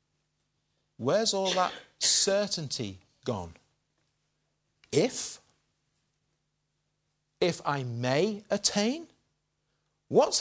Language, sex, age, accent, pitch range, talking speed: English, male, 50-69, British, 110-175 Hz, 65 wpm